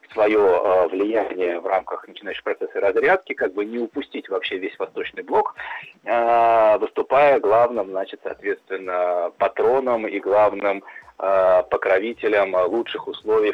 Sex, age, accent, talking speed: male, 30-49, native, 110 wpm